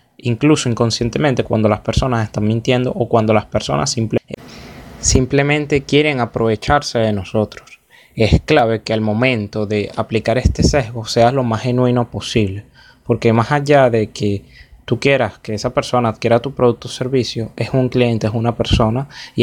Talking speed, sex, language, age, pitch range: 165 wpm, male, Spanish, 20-39, 110-135 Hz